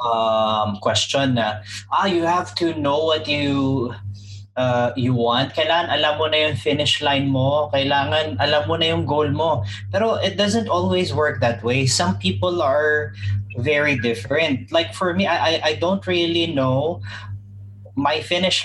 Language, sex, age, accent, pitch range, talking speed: English, male, 20-39, Filipino, 110-155 Hz, 160 wpm